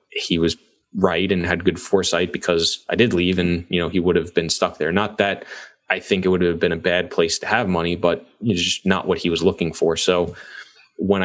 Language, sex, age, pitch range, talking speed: English, male, 20-39, 90-95 Hz, 240 wpm